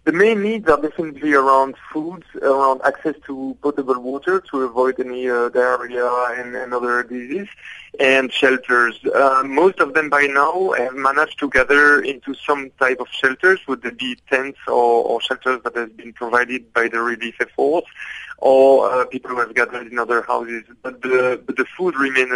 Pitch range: 120-140 Hz